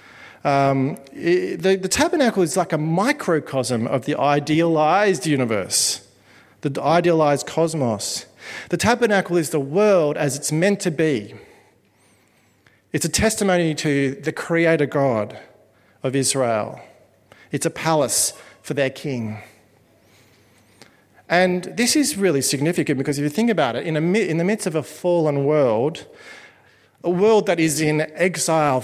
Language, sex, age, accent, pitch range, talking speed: English, male, 40-59, Australian, 130-170 Hz, 135 wpm